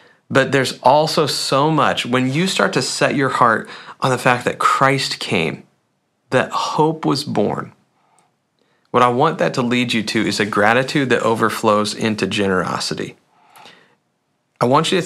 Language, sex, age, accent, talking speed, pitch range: English, male, 40-59, American, 165 wpm, 115-155 Hz